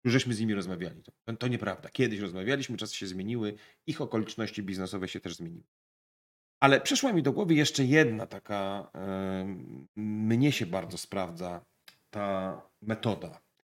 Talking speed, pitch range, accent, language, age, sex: 150 wpm, 100-130 Hz, native, Polish, 30-49, male